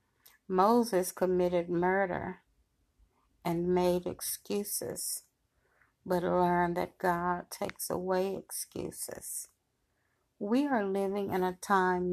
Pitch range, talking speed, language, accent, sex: 180-195 Hz, 95 wpm, English, American, female